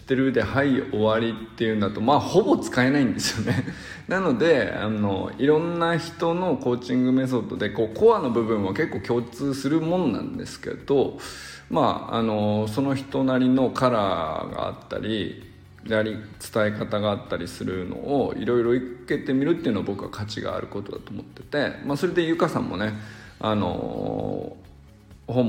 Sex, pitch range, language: male, 105-140 Hz, Japanese